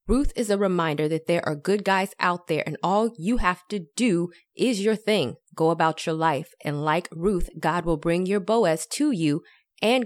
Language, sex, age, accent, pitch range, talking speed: English, female, 20-39, American, 160-210 Hz, 210 wpm